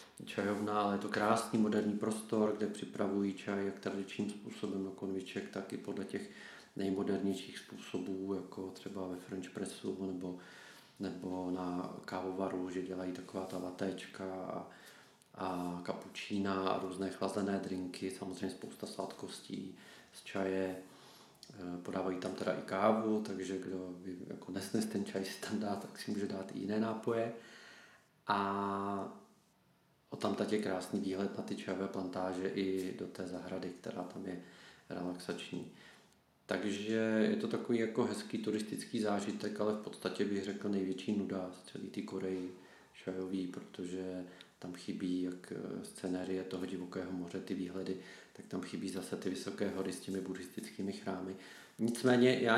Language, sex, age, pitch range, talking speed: Czech, male, 40-59, 95-105 Hz, 145 wpm